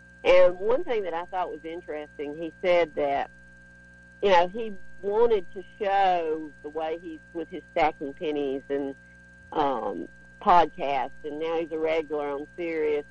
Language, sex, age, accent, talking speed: English, female, 50-69, American, 155 wpm